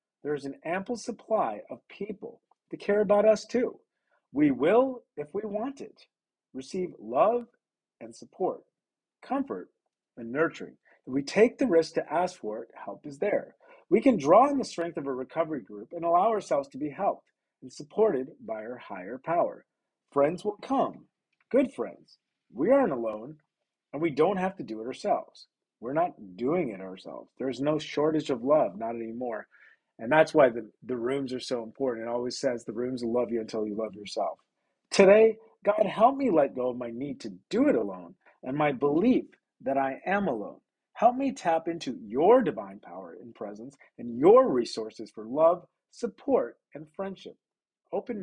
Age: 40-59